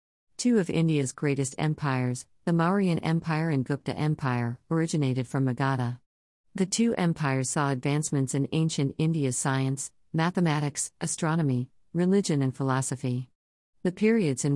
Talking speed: 130 wpm